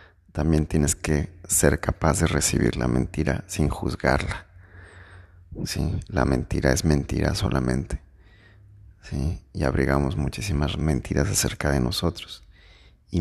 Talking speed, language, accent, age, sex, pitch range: 120 wpm, Spanish, Mexican, 30-49, male, 70-90 Hz